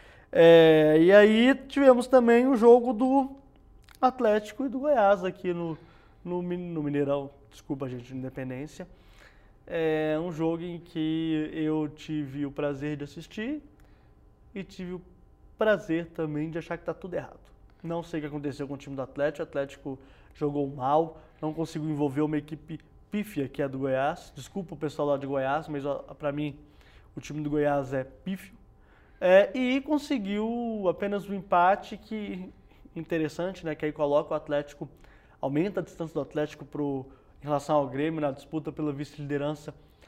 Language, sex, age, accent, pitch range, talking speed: English, male, 20-39, Brazilian, 145-190 Hz, 160 wpm